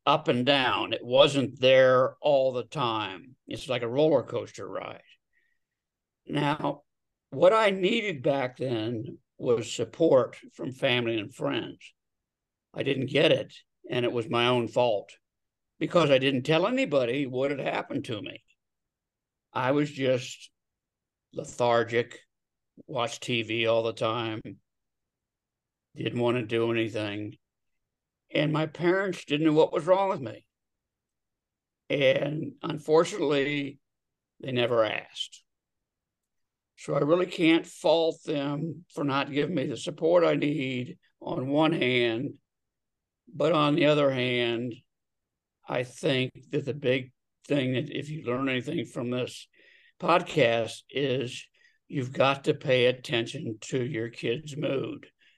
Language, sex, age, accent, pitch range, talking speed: English, male, 60-79, American, 120-155 Hz, 130 wpm